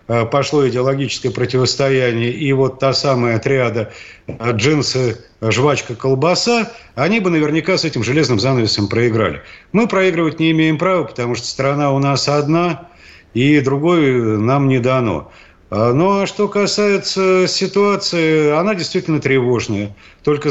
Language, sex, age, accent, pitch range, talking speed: Russian, male, 50-69, native, 125-165 Hz, 130 wpm